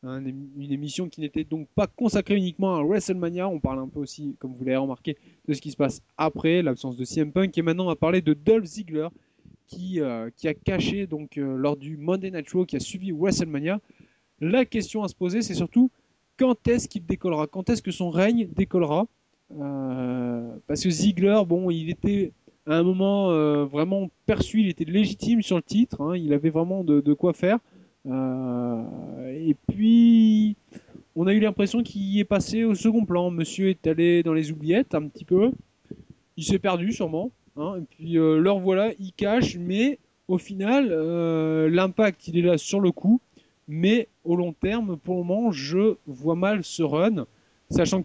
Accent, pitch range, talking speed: French, 150-200 Hz, 195 wpm